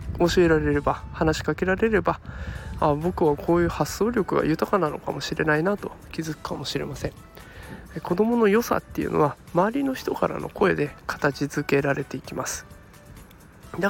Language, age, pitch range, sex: Japanese, 20-39, 150-200 Hz, male